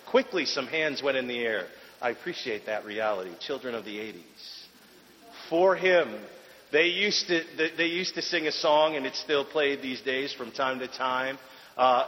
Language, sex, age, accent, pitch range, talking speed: English, male, 40-59, American, 155-220 Hz, 175 wpm